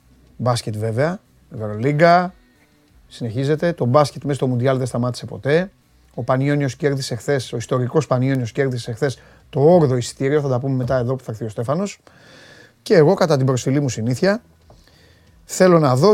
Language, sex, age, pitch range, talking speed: Greek, male, 30-49, 110-165 Hz, 170 wpm